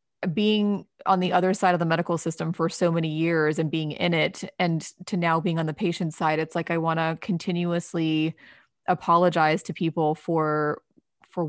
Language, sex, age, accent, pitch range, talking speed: English, female, 30-49, American, 160-185 Hz, 190 wpm